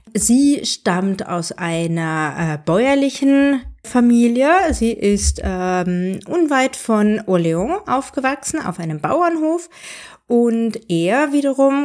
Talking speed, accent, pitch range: 100 wpm, German, 180-250 Hz